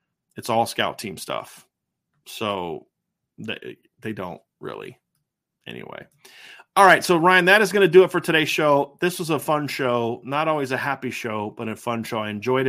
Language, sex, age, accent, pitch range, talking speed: English, male, 30-49, American, 125-145 Hz, 190 wpm